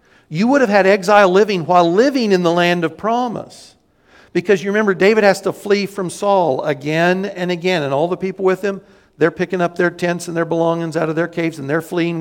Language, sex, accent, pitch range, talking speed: English, male, American, 170-205 Hz, 225 wpm